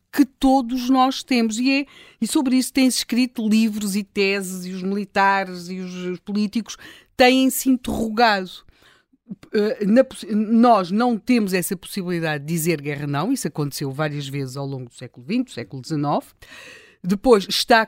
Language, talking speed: Portuguese, 150 wpm